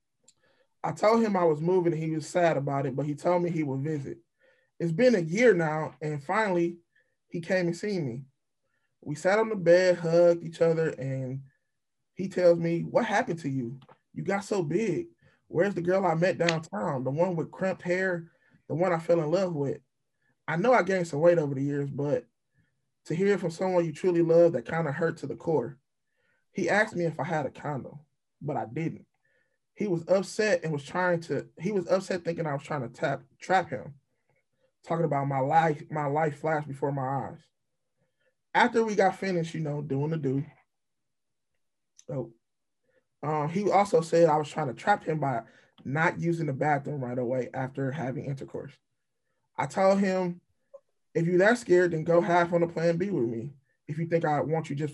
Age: 20-39